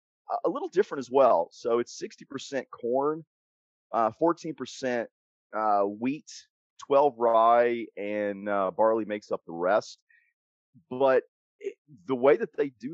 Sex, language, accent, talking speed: male, English, American, 145 wpm